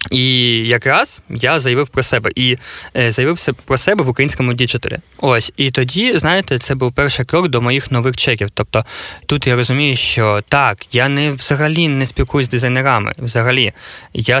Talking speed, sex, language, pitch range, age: 170 wpm, male, Ukrainian, 115-140 Hz, 20-39